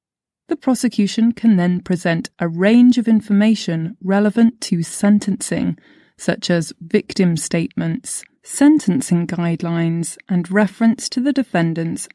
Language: English